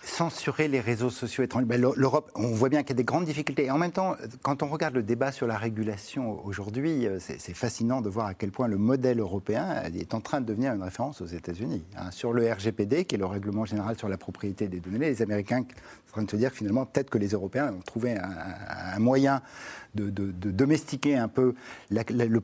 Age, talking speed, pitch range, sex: 50-69, 220 wpm, 105-140 Hz, male